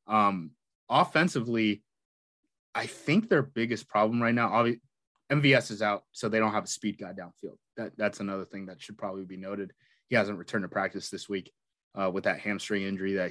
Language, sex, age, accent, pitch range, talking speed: English, male, 20-39, American, 105-135 Hz, 195 wpm